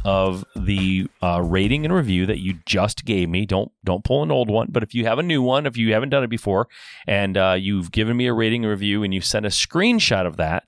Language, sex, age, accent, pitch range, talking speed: English, male, 30-49, American, 95-135 Hz, 260 wpm